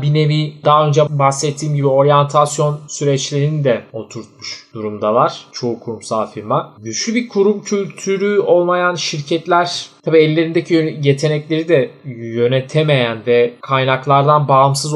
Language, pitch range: Turkish, 140-165 Hz